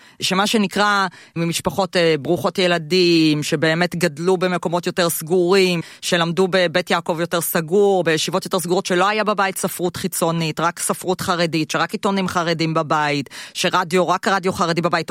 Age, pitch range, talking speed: 30-49, 170-210 Hz, 145 wpm